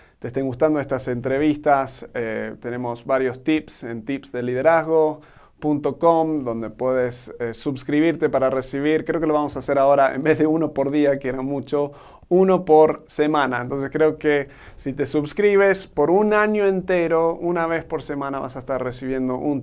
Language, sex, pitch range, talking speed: Spanish, male, 130-155 Hz, 170 wpm